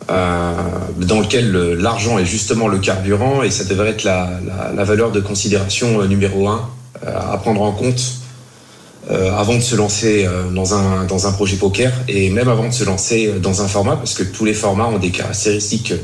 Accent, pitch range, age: French, 95-115 Hz, 30-49